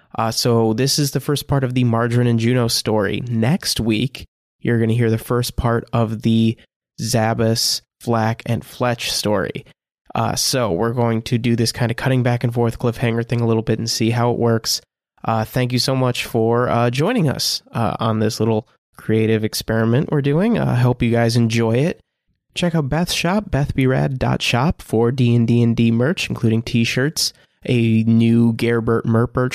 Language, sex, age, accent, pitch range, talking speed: English, male, 20-39, American, 115-135 Hz, 180 wpm